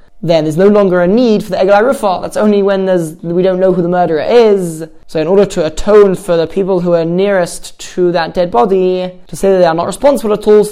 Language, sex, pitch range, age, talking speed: English, male, 170-200 Hz, 20-39, 250 wpm